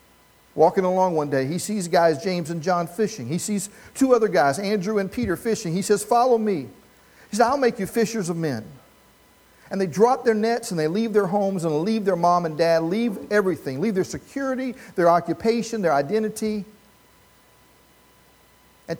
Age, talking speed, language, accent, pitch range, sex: 50-69, 185 wpm, English, American, 160-215 Hz, male